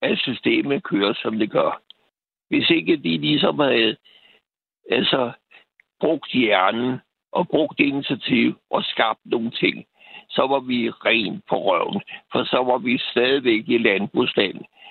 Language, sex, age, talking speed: Danish, male, 60-79, 135 wpm